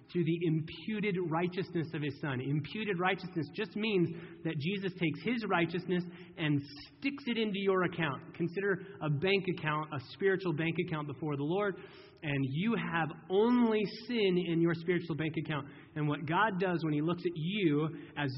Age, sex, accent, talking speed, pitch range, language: 30-49, male, American, 175 wpm, 150-190 Hz, English